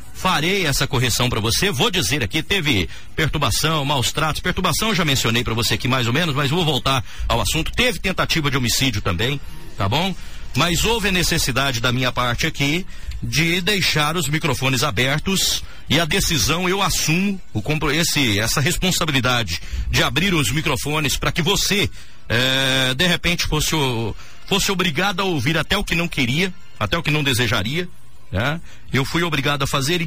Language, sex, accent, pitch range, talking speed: Portuguese, male, Brazilian, 130-175 Hz, 170 wpm